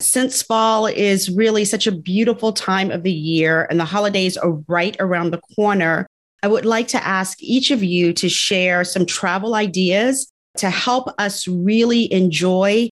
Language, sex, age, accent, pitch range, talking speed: English, female, 40-59, American, 190-235 Hz, 170 wpm